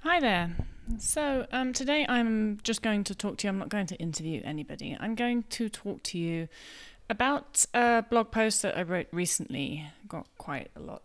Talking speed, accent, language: 195 wpm, British, English